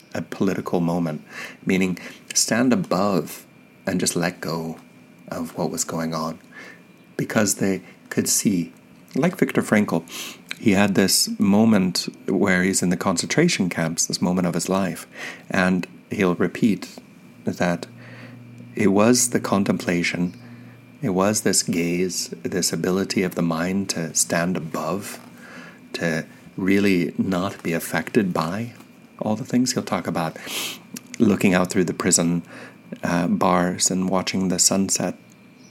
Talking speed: 135 wpm